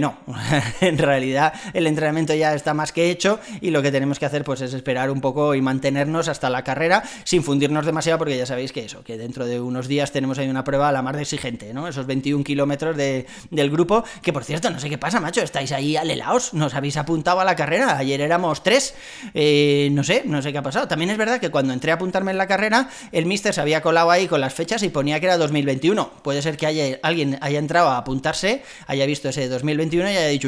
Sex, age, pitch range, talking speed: male, 30-49, 135-165 Hz, 245 wpm